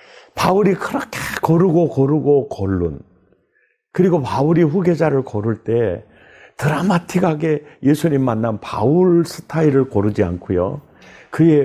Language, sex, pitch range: Korean, male, 115-185 Hz